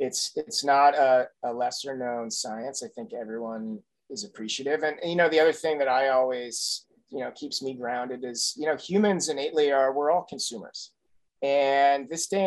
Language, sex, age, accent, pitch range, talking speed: English, male, 30-49, American, 125-155 Hz, 190 wpm